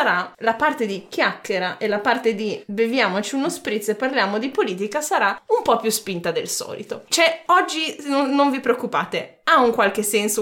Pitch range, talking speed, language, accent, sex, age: 210-315 Hz, 180 wpm, Italian, native, female, 20-39